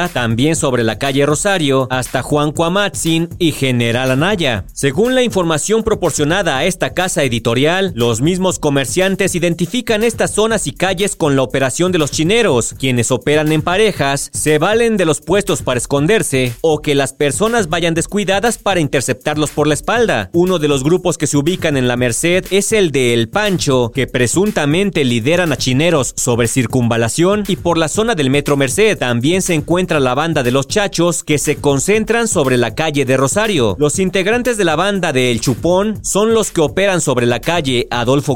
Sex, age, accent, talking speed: male, 40-59, Mexican, 180 wpm